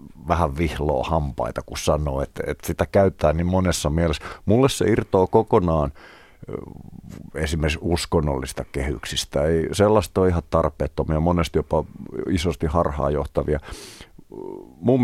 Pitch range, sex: 80-100 Hz, male